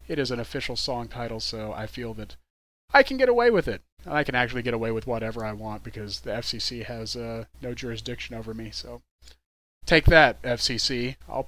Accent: American